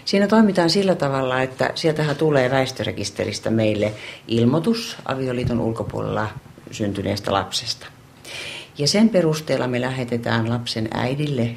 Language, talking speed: Finnish, 110 wpm